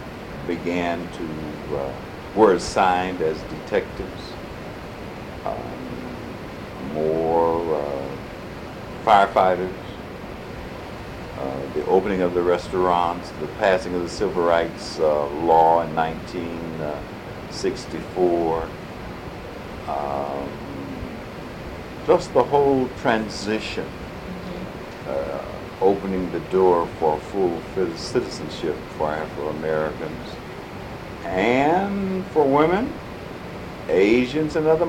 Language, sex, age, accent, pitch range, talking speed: English, male, 60-79, American, 80-95 Hz, 80 wpm